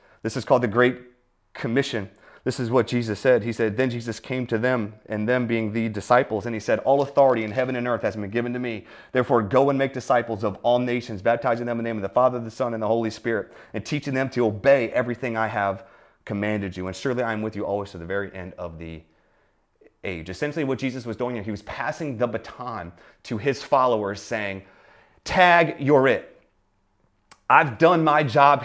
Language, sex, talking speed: English, male, 220 wpm